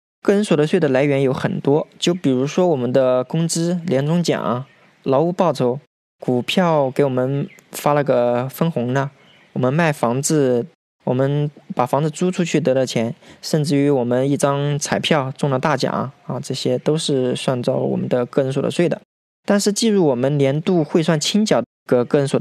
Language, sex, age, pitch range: Chinese, male, 20-39, 130-175 Hz